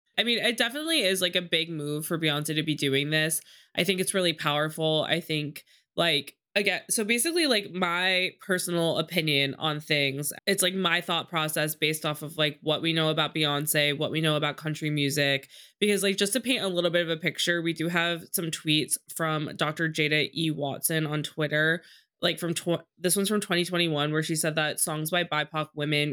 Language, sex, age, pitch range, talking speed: English, female, 20-39, 155-180 Hz, 205 wpm